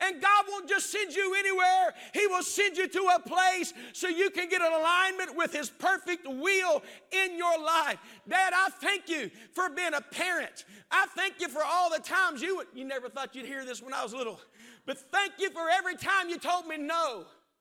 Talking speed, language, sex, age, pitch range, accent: 220 wpm, English, male, 50-69, 325-385 Hz, American